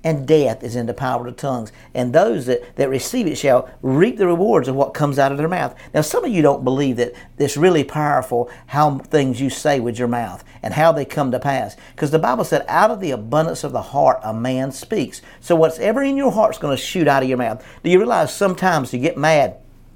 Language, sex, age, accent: English, male, 50-69, American